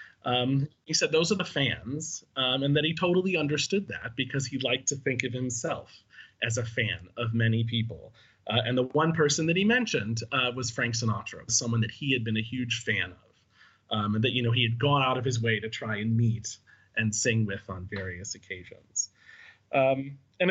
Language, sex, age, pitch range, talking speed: English, male, 30-49, 115-150 Hz, 210 wpm